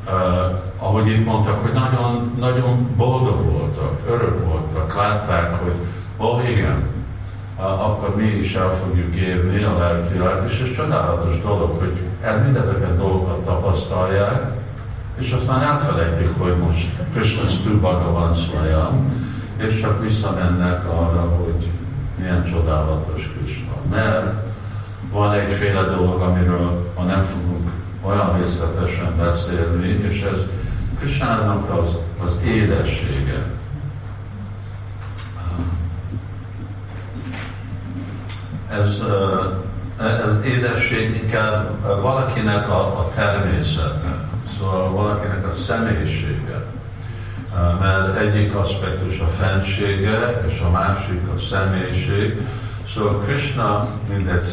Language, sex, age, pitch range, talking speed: Hungarian, male, 50-69, 90-110 Hz, 105 wpm